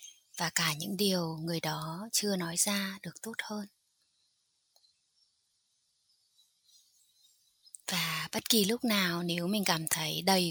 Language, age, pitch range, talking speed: Vietnamese, 20-39, 165-205 Hz, 125 wpm